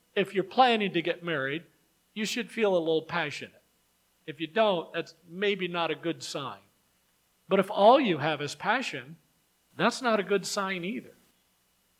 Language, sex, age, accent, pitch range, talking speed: English, male, 50-69, American, 150-205 Hz, 170 wpm